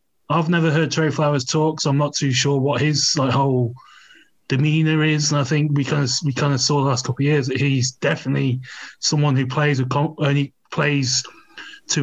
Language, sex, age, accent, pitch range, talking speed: English, male, 20-39, British, 130-150 Hz, 210 wpm